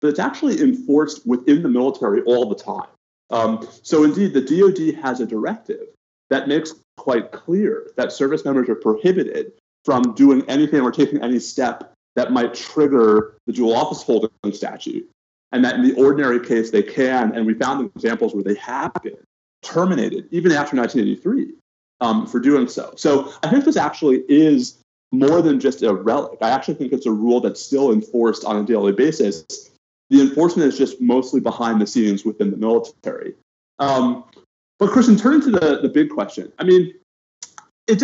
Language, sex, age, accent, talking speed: English, male, 30-49, American, 180 wpm